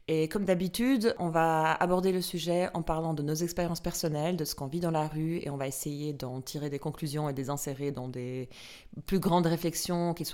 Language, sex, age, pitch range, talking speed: French, female, 30-49, 150-185 Hz, 225 wpm